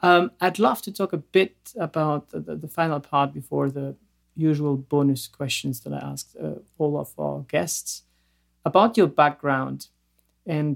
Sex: male